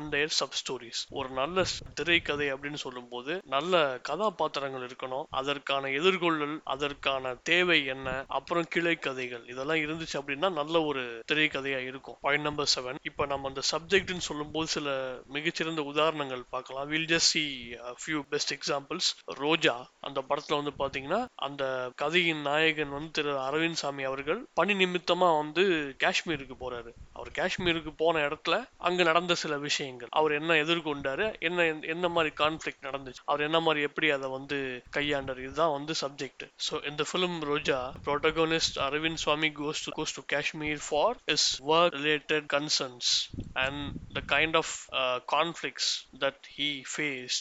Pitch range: 135-160 Hz